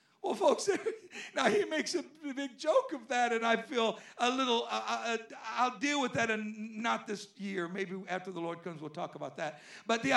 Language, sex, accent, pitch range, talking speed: English, male, American, 195-275 Hz, 210 wpm